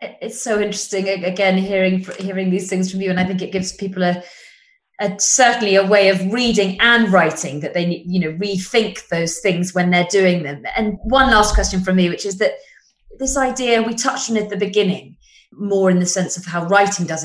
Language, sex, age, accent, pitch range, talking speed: English, female, 20-39, British, 170-210 Hz, 215 wpm